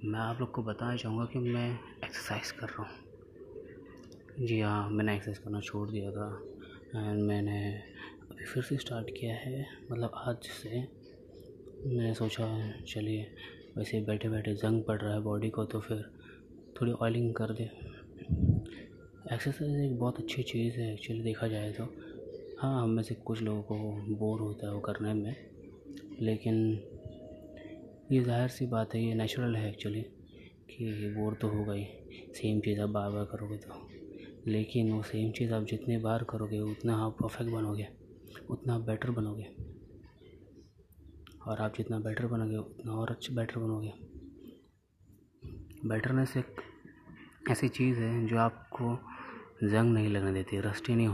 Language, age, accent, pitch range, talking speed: Hindi, 20-39, native, 105-115 Hz, 155 wpm